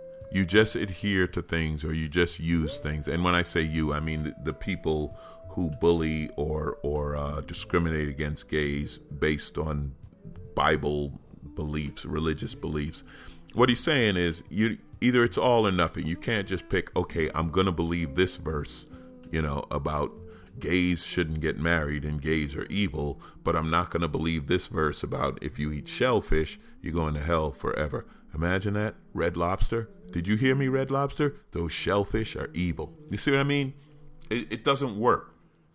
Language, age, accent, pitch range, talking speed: English, 40-59, American, 80-100 Hz, 175 wpm